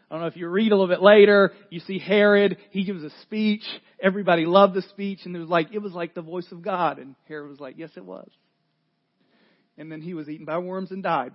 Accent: American